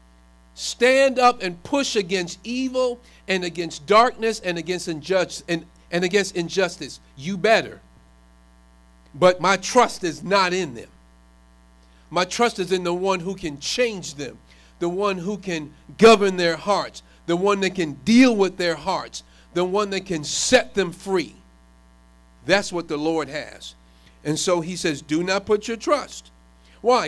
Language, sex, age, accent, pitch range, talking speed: English, male, 50-69, American, 150-205 Hz, 160 wpm